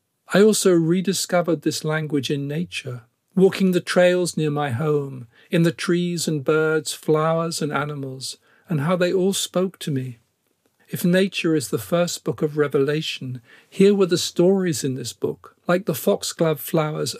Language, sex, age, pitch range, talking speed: English, male, 50-69, 140-175 Hz, 165 wpm